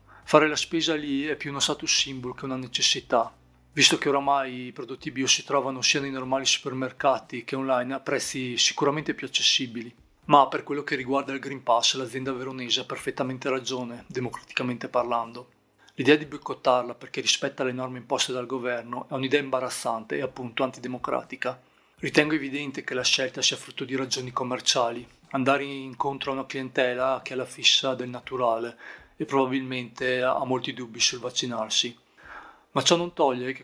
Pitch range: 125-140 Hz